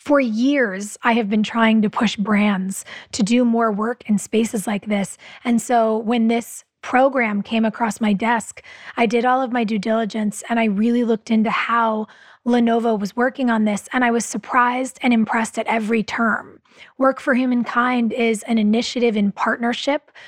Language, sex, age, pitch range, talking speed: English, female, 20-39, 220-250 Hz, 180 wpm